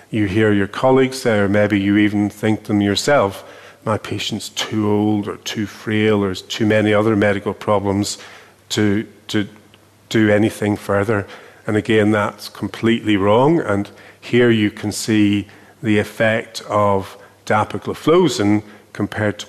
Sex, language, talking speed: male, English, 150 wpm